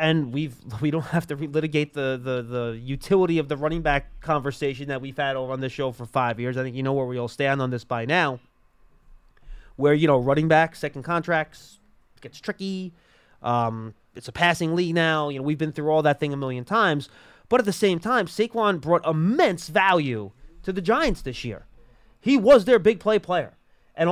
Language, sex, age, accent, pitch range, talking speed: English, male, 30-49, American, 145-220 Hz, 215 wpm